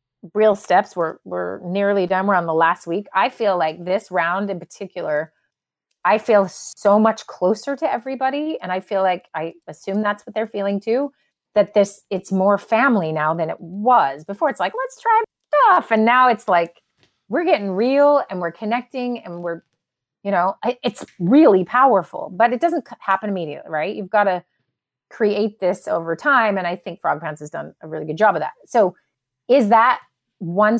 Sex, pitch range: female, 175-225 Hz